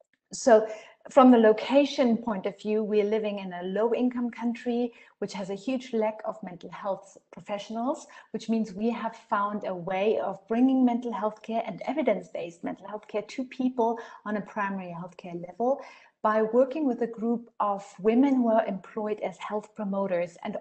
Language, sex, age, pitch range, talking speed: English, female, 30-49, 195-225 Hz, 185 wpm